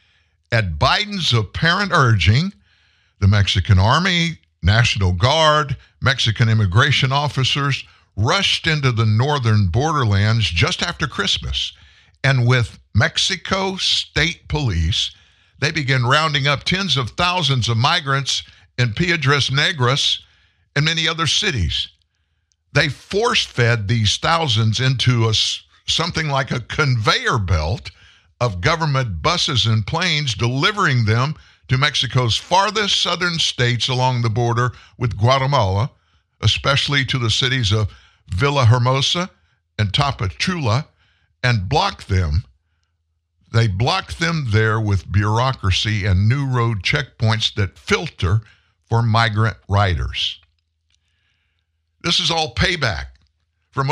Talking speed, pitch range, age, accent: 110 wpm, 95-140 Hz, 50-69, American